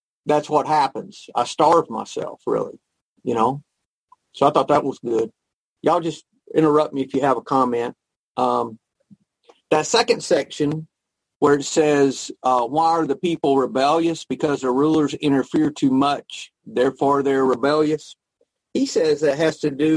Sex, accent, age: male, American, 50-69